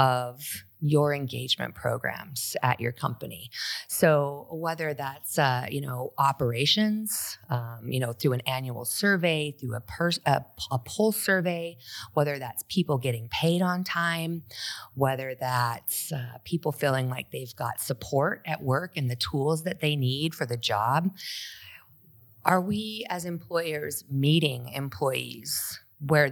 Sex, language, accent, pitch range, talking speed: female, English, American, 125-150 Hz, 140 wpm